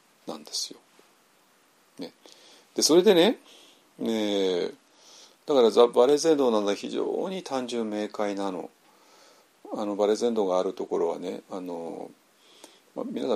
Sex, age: male, 50-69